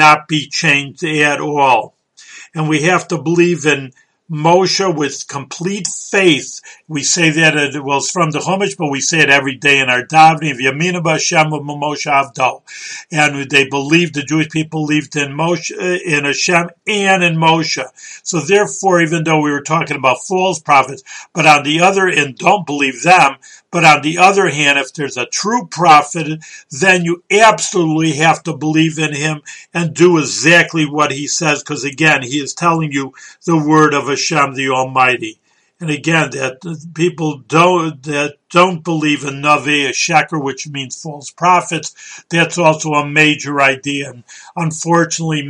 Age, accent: 50-69, American